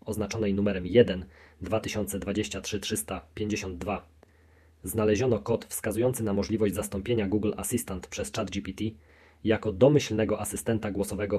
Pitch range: 95-110 Hz